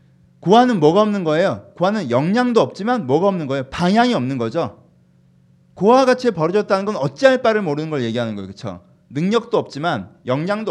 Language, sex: Korean, male